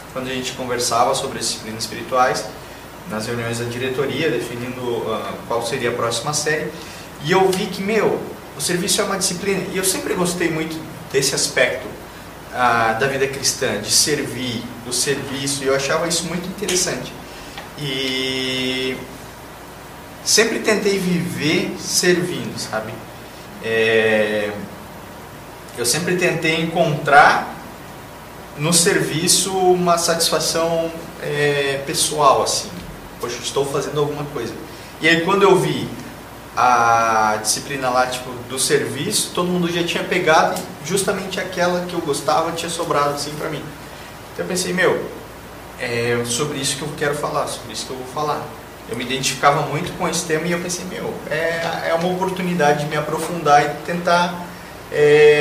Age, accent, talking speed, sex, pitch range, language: 20-39, Brazilian, 145 wpm, male, 130-175 Hz, English